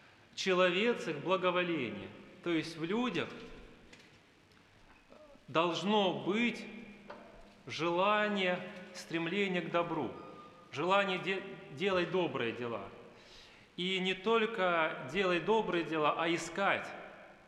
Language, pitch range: Russian, 160-190 Hz